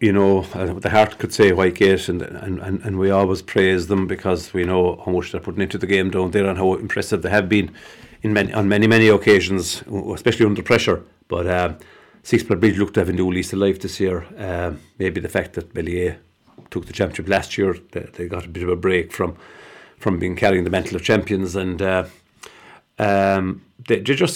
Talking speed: 220 wpm